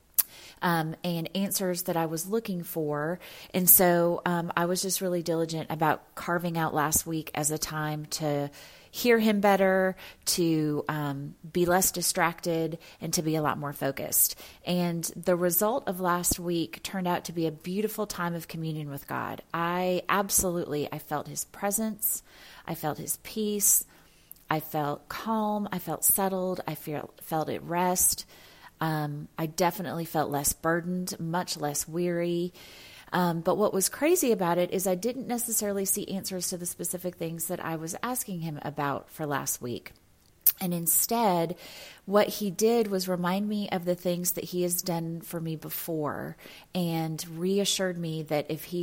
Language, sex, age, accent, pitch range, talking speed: English, female, 30-49, American, 155-185 Hz, 165 wpm